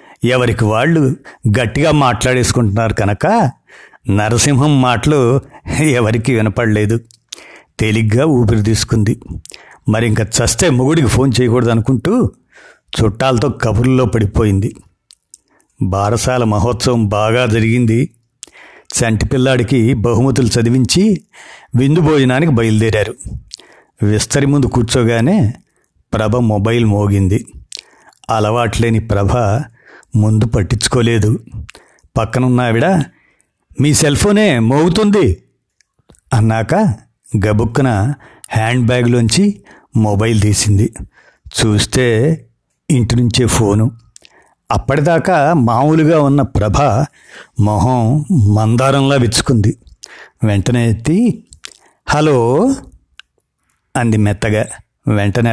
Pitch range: 110-135 Hz